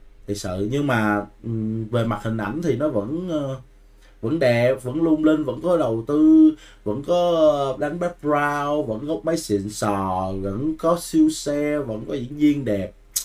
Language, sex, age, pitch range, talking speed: Vietnamese, male, 20-39, 105-145 Hz, 170 wpm